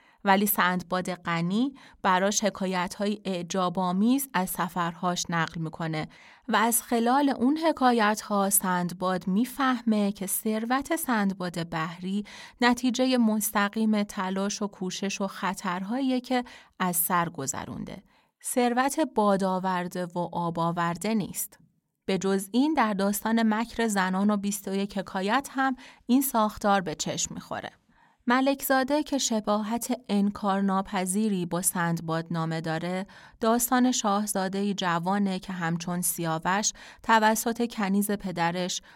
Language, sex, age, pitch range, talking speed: Persian, female, 30-49, 180-225 Hz, 110 wpm